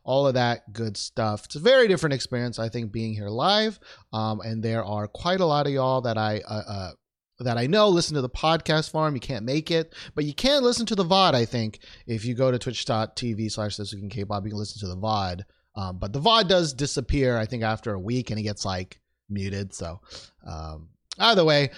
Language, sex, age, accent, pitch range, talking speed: English, male, 30-49, American, 105-145 Hz, 220 wpm